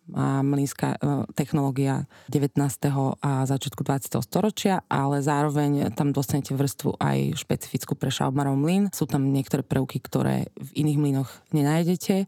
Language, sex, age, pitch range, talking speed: Slovak, female, 20-39, 140-155 Hz, 130 wpm